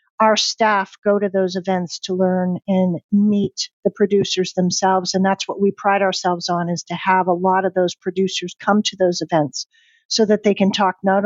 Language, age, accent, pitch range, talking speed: English, 50-69, American, 180-205 Hz, 205 wpm